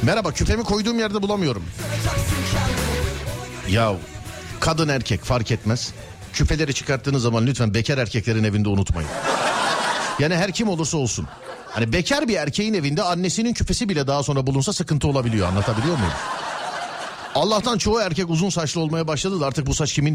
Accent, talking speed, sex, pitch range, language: native, 150 wpm, male, 110-175 Hz, Turkish